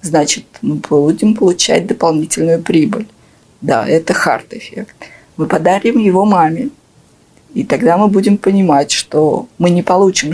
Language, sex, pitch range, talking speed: Russian, female, 155-195 Hz, 135 wpm